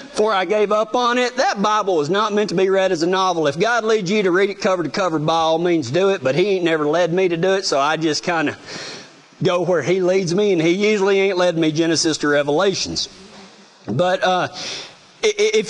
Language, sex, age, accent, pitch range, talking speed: English, male, 40-59, American, 175-225 Hz, 240 wpm